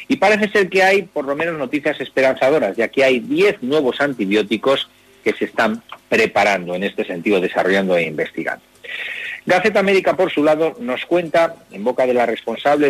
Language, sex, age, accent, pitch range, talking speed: Spanish, male, 40-59, Spanish, 115-170 Hz, 175 wpm